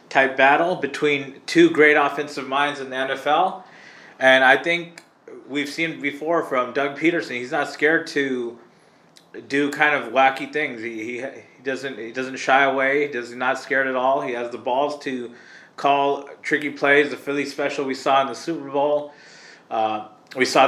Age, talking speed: 20-39, 175 wpm